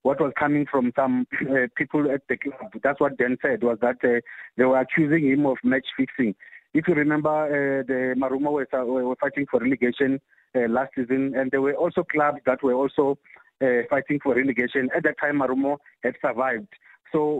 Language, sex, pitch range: English, male, 130-150 Hz